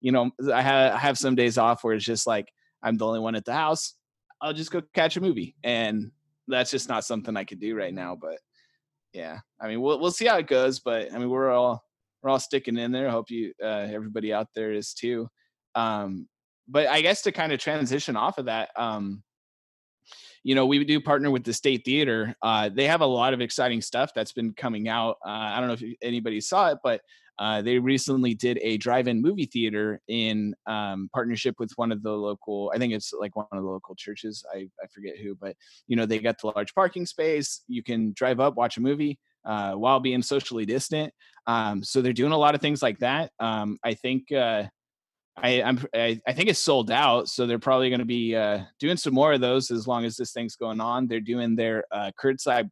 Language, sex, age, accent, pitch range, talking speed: English, male, 20-39, American, 110-135 Hz, 230 wpm